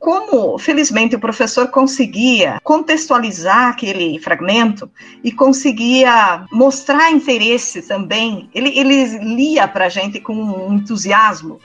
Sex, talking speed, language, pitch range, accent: female, 115 wpm, Portuguese, 215-275 Hz, Brazilian